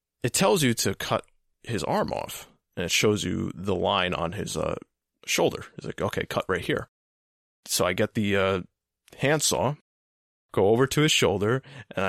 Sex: male